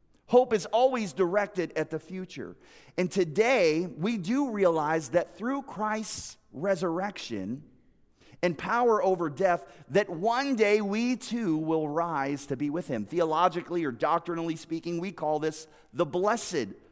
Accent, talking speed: American, 140 wpm